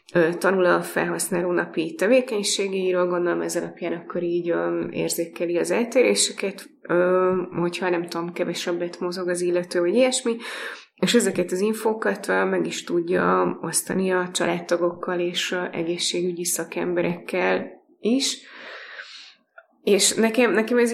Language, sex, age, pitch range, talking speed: Hungarian, female, 20-39, 175-190 Hz, 115 wpm